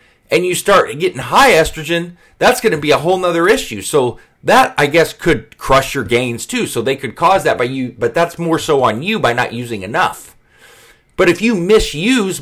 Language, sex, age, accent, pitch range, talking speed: English, male, 30-49, American, 130-185 Hz, 215 wpm